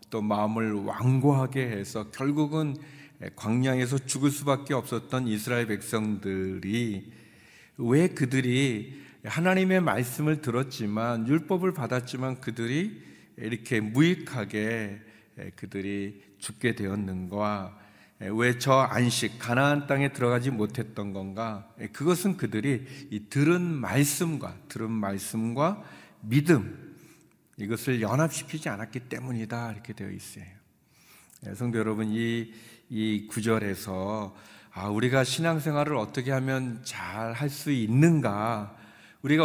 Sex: male